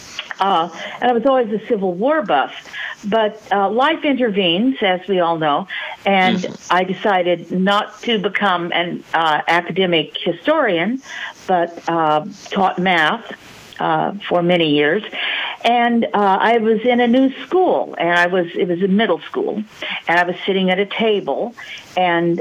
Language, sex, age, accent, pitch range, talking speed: English, female, 50-69, American, 170-220 Hz, 160 wpm